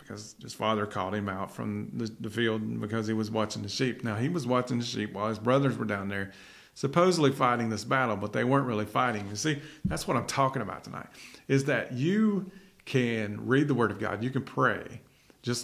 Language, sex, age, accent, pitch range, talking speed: English, male, 40-59, American, 110-130 Hz, 225 wpm